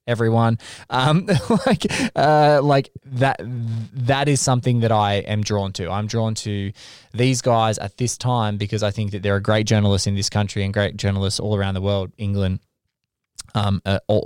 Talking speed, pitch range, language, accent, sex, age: 180 wpm, 105-125 Hz, English, Australian, male, 20-39